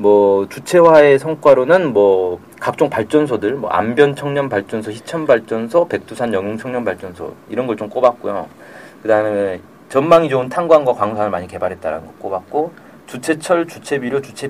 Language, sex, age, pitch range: Korean, male, 40-59, 105-155 Hz